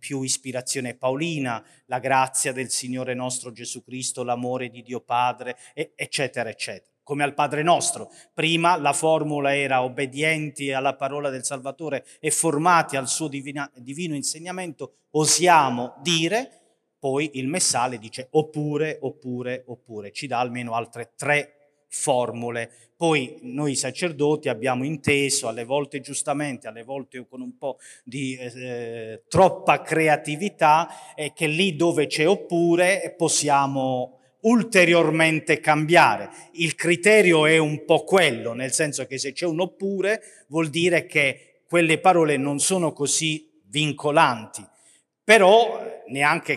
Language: Italian